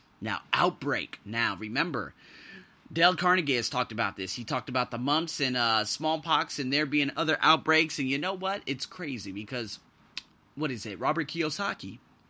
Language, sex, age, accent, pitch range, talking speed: English, male, 30-49, American, 120-155 Hz, 170 wpm